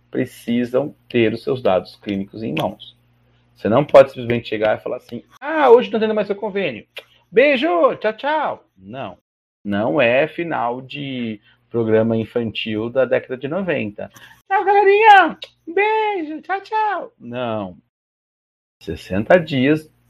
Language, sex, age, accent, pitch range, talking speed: Portuguese, male, 40-59, Brazilian, 110-145 Hz, 135 wpm